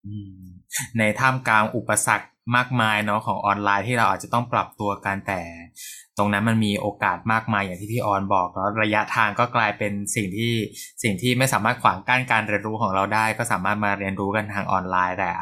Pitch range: 100-115 Hz